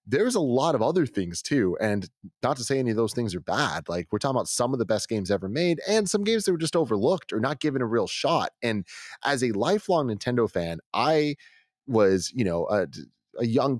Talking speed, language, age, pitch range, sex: 235 wpm, English, 30-49, 95-125 Hz, male